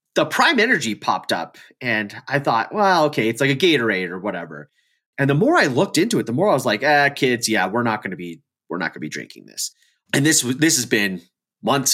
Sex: male